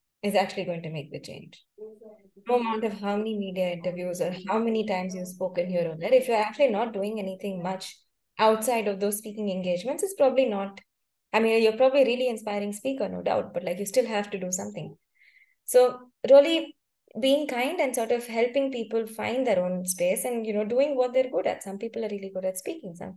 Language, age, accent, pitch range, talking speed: English, 20-39, Indian, 185-235 Hz, 220 wpm